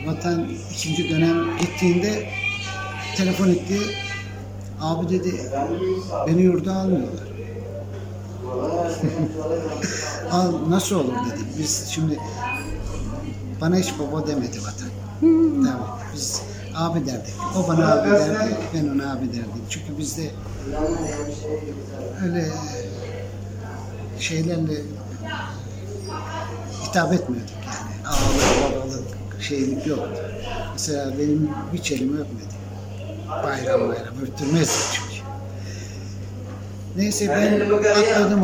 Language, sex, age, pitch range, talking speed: Turkish, male, 60-79, 100-155 Hz, 85 wpm